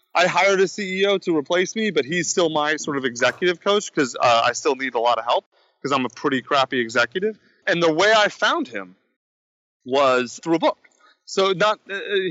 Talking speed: 210 wpm